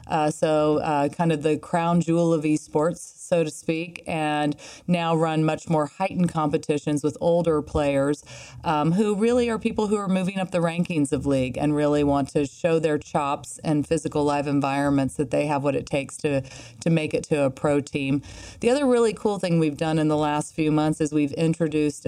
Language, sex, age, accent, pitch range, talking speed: English, female, 30-49, American, 140-165 Hz, 205 wpm